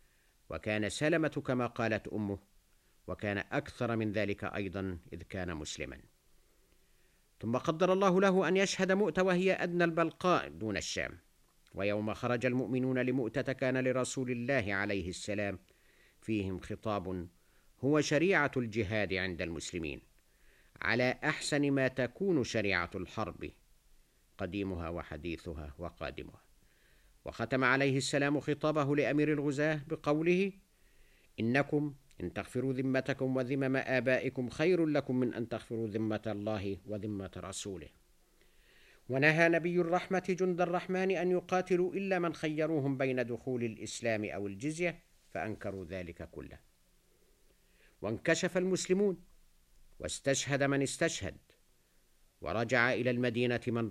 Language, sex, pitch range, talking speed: Arabic, male, 100-150 Hz, 110 wpm